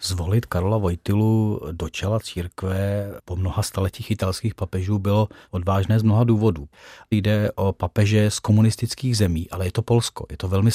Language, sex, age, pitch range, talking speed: Czech, male, 40-59, 100-115 Hz, 160 wpm